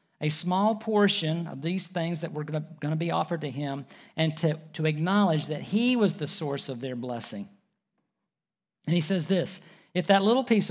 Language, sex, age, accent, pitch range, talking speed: English, male, 50-69, American, 155-200 Hz, 190 wpm